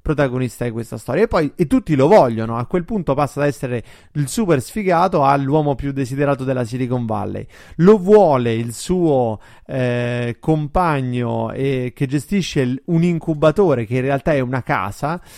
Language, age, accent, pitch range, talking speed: Italian, 30-49, native, 125-155 Hz, 170 wpm